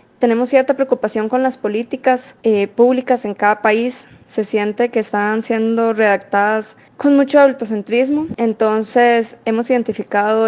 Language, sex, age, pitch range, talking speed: Spanish, female, 20-39, 210-235 Hz, 130 wpm